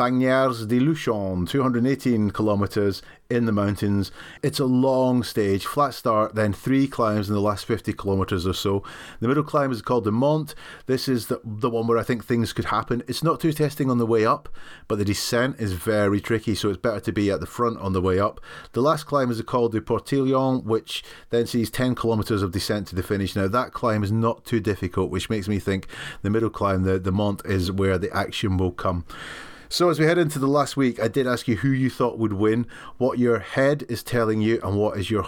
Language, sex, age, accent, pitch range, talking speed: English, male, 30-49, British, 95-120 Hz, 230 wpm